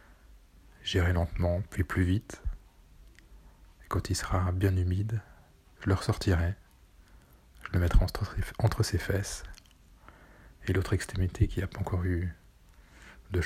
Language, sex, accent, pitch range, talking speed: French, male, French, 80-95 Hz, 130 wpm